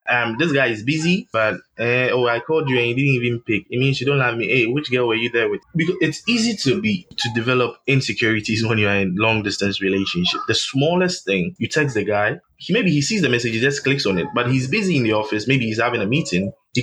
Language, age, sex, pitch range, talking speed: English, 20-39, male, 110-145 Hz, 260 wpm